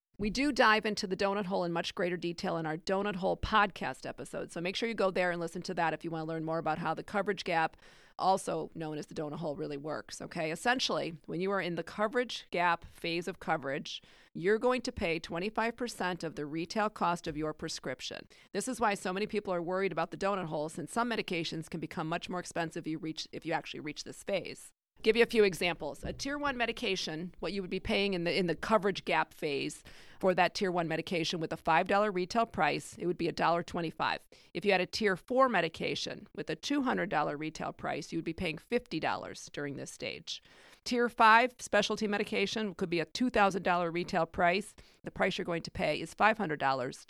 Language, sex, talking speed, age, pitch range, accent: English, female, 215 wpm, 40-59, 165-210 Hz, American